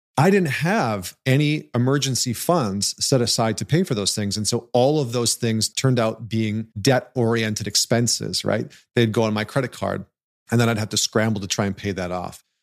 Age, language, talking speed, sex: 40-59, English, 205 wpm, male